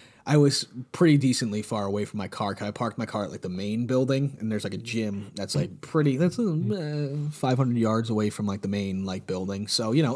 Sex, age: male, 30-49